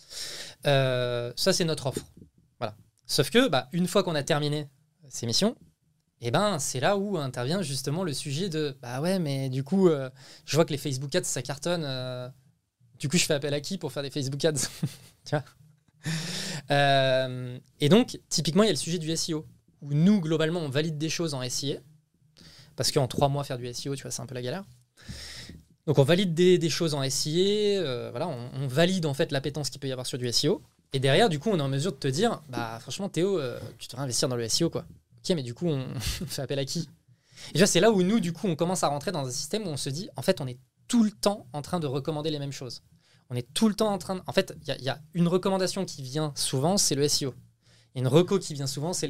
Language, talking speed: French, 255 wpm